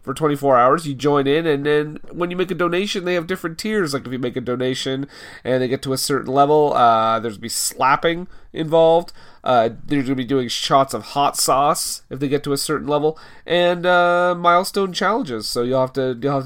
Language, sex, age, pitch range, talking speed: English, male, 30-49, 130-160 Hz, 225 wpm